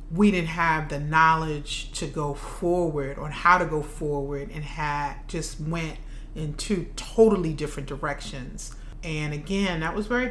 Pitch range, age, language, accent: 140-165 Hz, 30-49, English, American